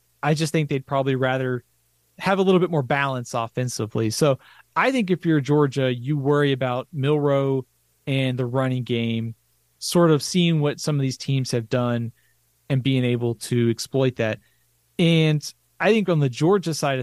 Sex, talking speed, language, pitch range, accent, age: male, 175 wpm, English, 120-155 Hz, American, 30-49